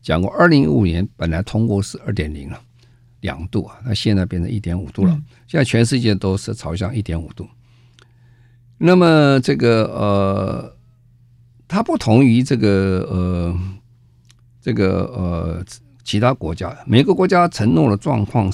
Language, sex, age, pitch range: Chinese, male, 50-69, 95-125 Hz